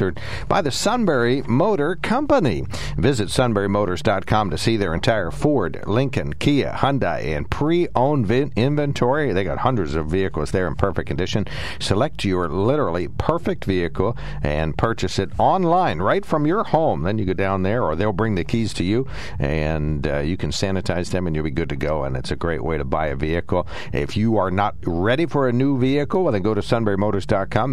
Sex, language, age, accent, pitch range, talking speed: male, English, 60-79, American, 80-110 Hz, 190 wpm